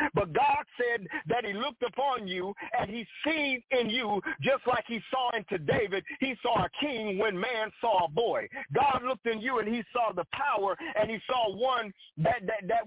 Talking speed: 205 wpm